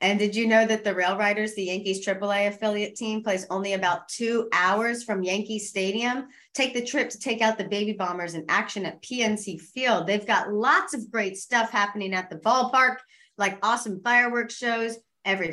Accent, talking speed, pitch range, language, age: American, 195 wpm, 180-220 Hz, English, 30-49